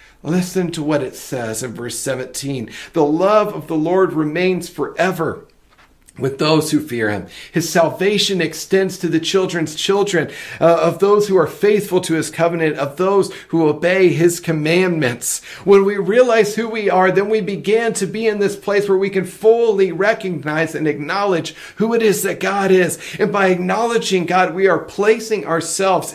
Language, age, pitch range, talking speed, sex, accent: English, 40-59, 170-205 Hz, 175 wpm, male, American